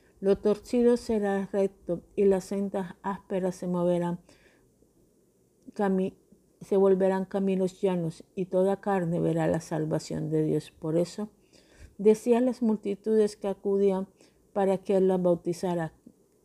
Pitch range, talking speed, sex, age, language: 175-200 Hz, 130 wpm, female, 50-69, Spanish